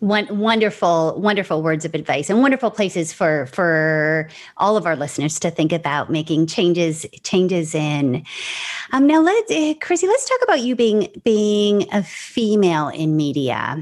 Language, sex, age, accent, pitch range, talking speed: English, female, 30-49, American, 160-205 Hz, 160 wpm